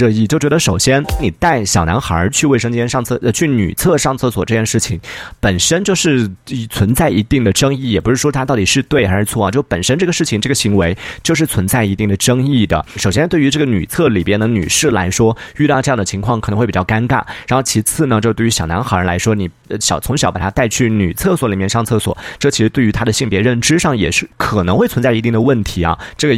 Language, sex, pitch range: Chinese, male, 100-135 Hz